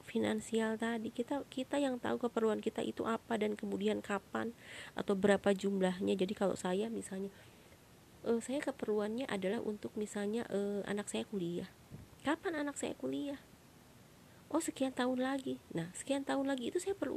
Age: 30-49